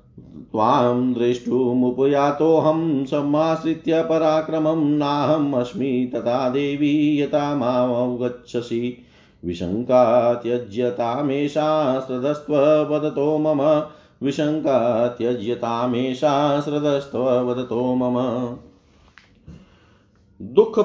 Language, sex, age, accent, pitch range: Hindi, male, 50-69, native, 120-150 Hz